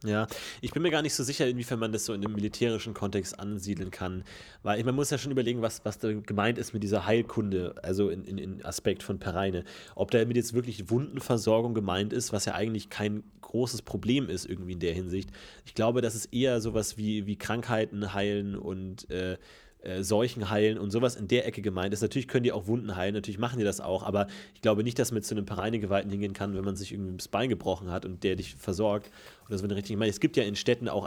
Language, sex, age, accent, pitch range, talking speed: German, male, 30-49, German, 100-115 Hz, 240 wpm